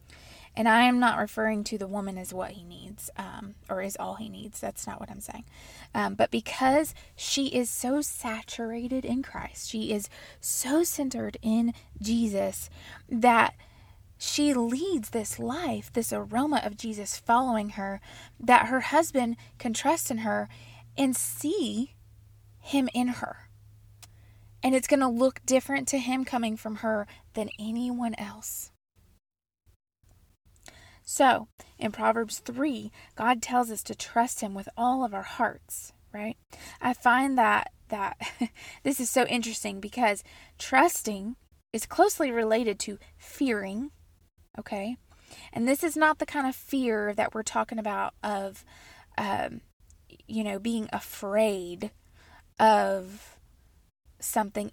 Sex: female